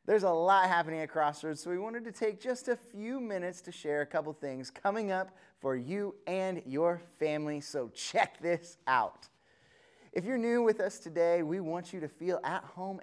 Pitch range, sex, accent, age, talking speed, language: 145-195 Hz, male, American, 30-49, 205 wpm, English